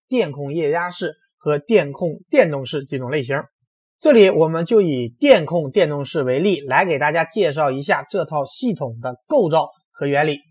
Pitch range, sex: 155-235 Hz, male